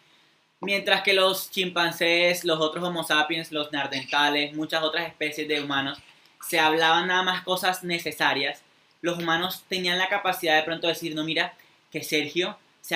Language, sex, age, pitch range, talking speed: Spanish, male, 10-29, 155-185 Hz, 155 wpm